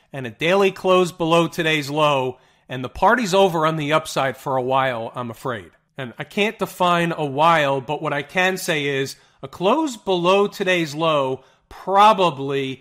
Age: 40-59